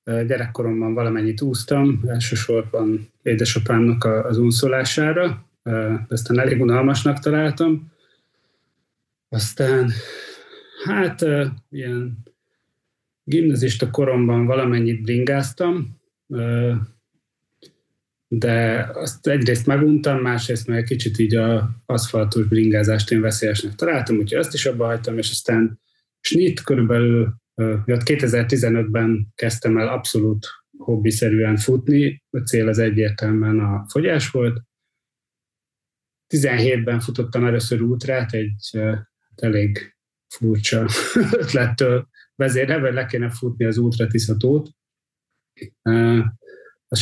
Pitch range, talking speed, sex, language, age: 110-130 Hz, 90 wpm, male, Hungarian, 30-49